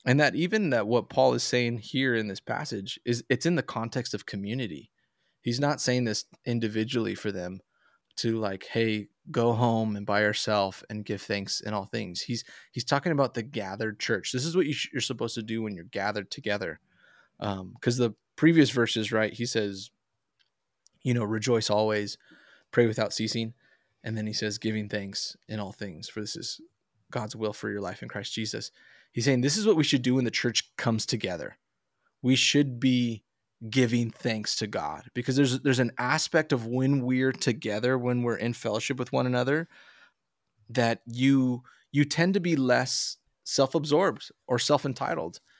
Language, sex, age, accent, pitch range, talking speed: English, male, 20-39, American, 110-130 Hz, 185 wpm